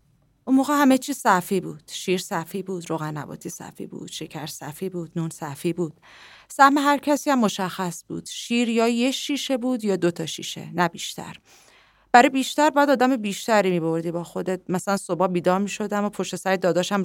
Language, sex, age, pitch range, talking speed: Persian, female, 30-49, 180-250 Hz, 185 wpm